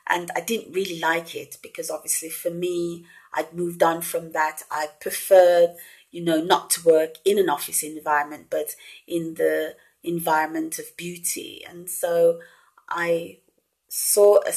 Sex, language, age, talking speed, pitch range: female, English, 30-49, 150 wpm, 160-200 Hz